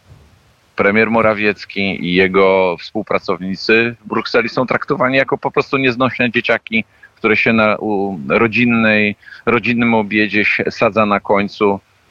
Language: Polish